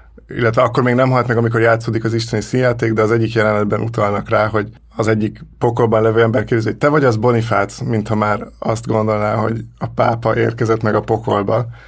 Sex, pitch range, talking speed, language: male, 110-120 Hz, 200 wpm, Hungarian